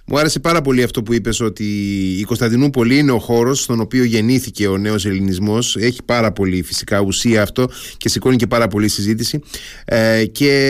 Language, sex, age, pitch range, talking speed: Greek, male, 30-49, 110-150 Hz, 185 wpm